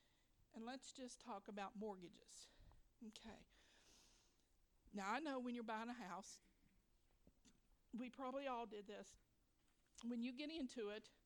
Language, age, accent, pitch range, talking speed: English, 50-69, American, 215-255 Hz, 135 wpm